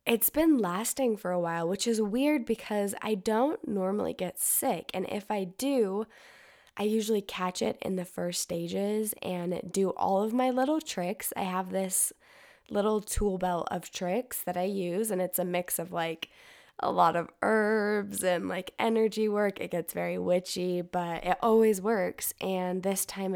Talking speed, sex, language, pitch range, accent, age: 180 wpm, female, English, 175-215 Hz, American, 10-29